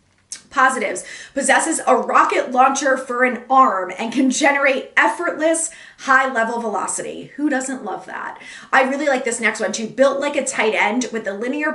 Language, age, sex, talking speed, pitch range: English, 20-39, female, 175 wpm, 210-265 Hz